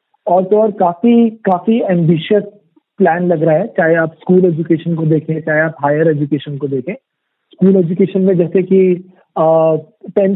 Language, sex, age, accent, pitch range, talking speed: Hindi, male, 40-59, native, 165-200 Hz, 160 wpm